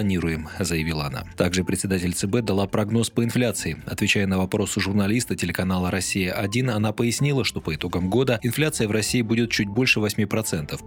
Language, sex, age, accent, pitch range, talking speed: Russian, male, 20-39, native, 95-120 Hz, 170 wpm